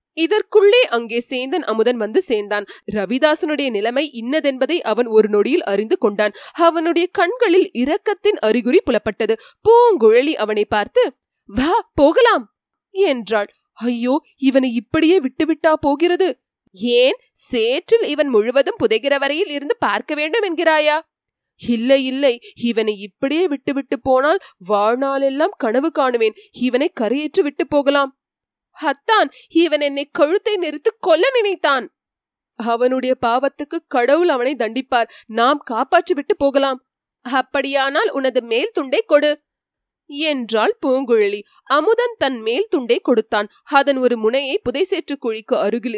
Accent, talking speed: native, 110 wpm